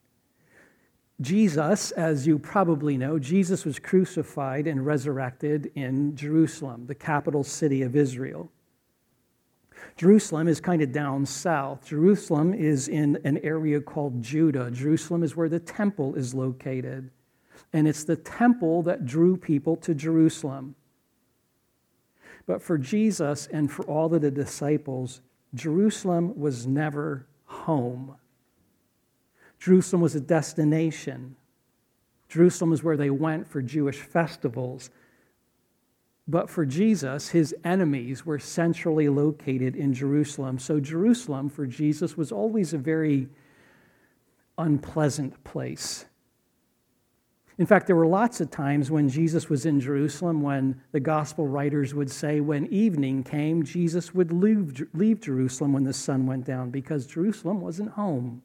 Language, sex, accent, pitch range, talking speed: English, male, American, 135-165 Hz, 130 wpm